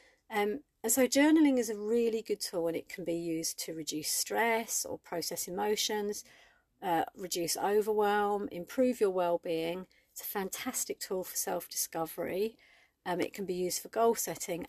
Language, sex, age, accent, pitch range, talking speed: English, female, 40-59, British, 170-235 Hz, 160 wpm